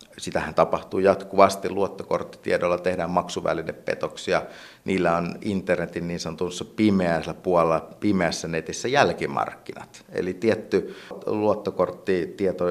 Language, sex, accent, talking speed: Finnish, male, native, 90 wpm